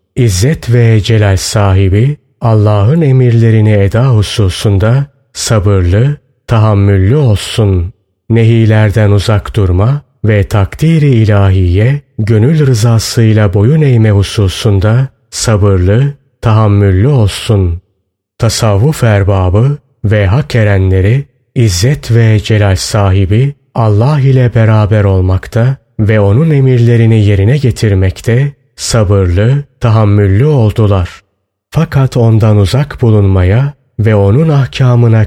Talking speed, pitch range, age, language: 90 wpm, 100-130 Hz, 30-49, Turkish